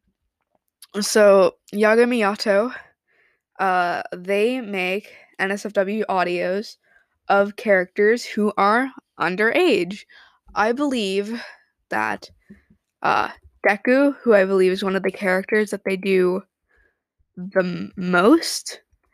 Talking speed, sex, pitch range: 95 wpm, female, 190-240 Hz